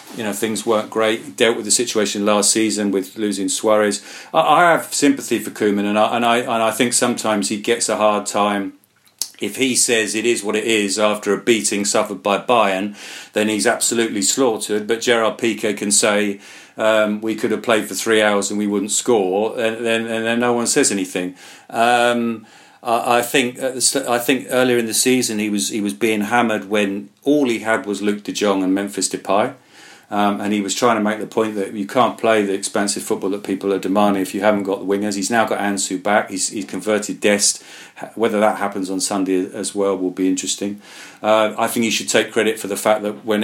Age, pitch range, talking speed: 40-59, 100-110 Hz, 220 wpm